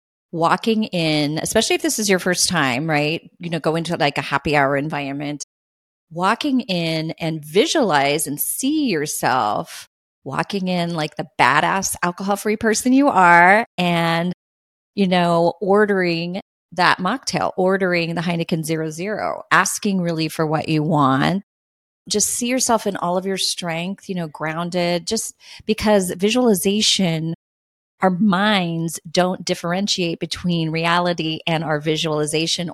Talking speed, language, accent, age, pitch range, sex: 135 wpm, English, American, 30-49, 155-200 Hz, female